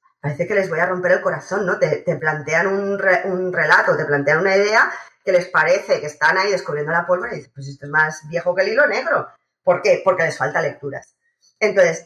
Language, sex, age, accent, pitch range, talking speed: Spanish, female, 20-39, Spanish, 170-200 Hz, 235 wpm